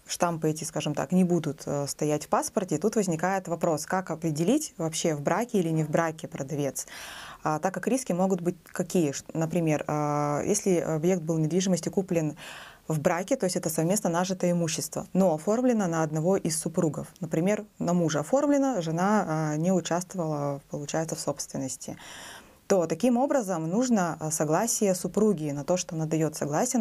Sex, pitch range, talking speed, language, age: female, 160-195 Hz, 160 wpm, Russian, 20-39